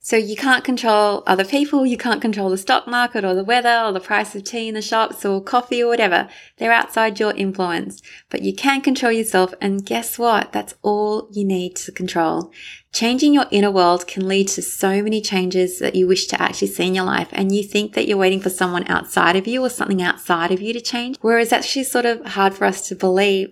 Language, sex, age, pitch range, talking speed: English, female, 20-39, 185-225 Hz, 235 wpm